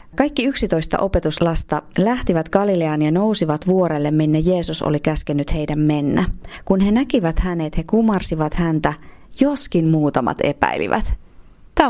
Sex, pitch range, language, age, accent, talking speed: female, 155-215 Hz, Finnish, 30-49, native, 125 wpm